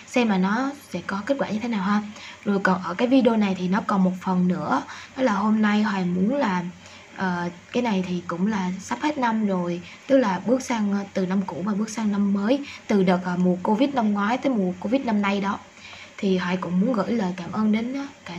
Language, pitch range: Vietnamese, 185-225 Hz